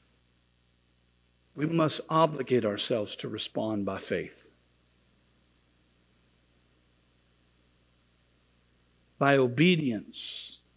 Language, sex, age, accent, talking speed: English, male, 60-79, American, 55 wpm